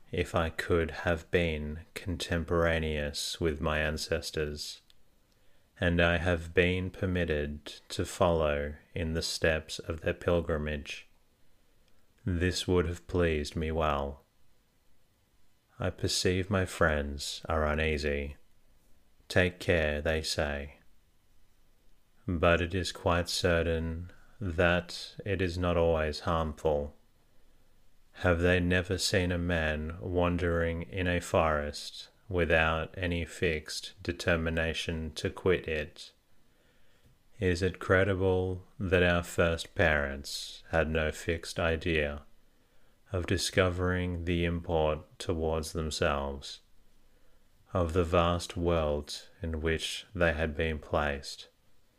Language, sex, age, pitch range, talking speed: English, male, 30-49, 80-90 Hz, 105 wpm